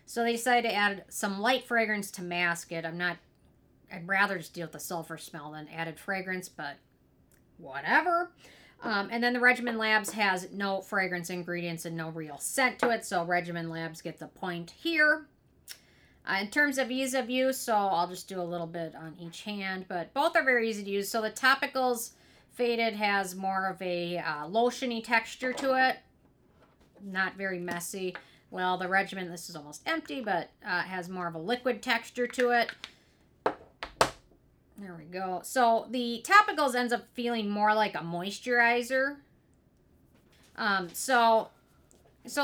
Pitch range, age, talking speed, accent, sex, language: 175-240 Hz, 40-59, 175 wpm, American, female, English